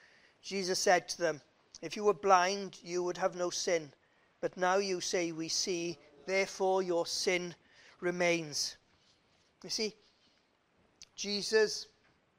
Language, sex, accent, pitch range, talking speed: English, male, British, 185-255 Hz, 125 wpm